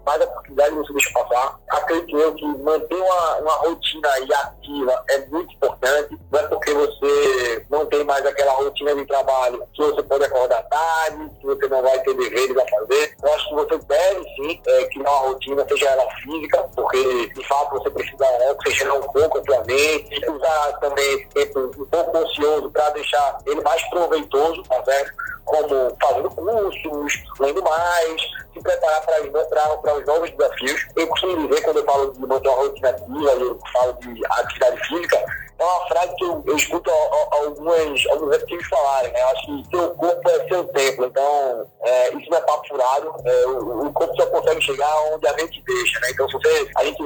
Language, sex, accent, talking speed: Portuguese, male, Brazilian, 190 wpm